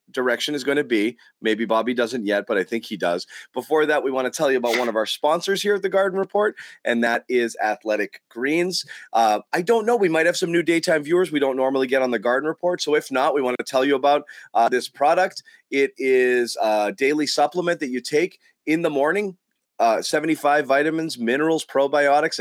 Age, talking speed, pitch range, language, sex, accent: 30-49, 220 wpm, 115-155 Hz, English, male, American